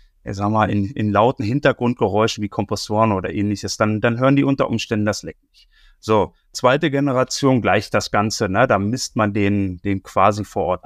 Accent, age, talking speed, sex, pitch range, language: German, 30-49, 180 wpm, male, 105-135 Hz, German